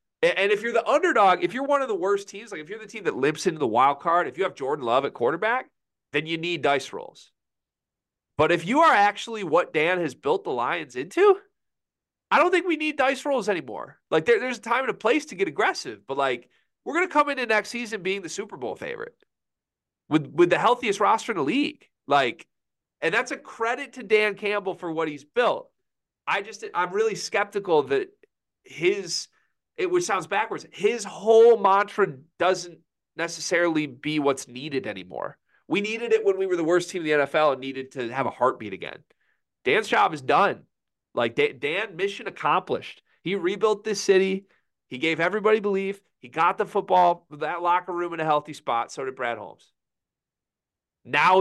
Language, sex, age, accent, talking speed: English, male, 30-49, American, 195 wpm